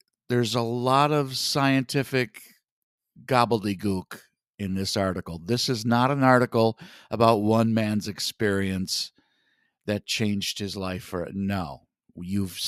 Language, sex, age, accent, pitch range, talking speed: English, male, 50-69, American, 95-130 Hz, 120 wpm